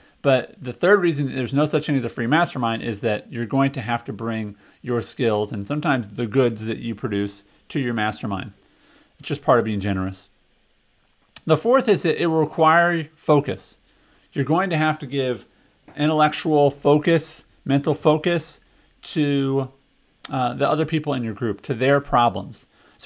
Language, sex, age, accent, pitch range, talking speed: English, male, 40-59, American, 110-145 Hz, 175 wpm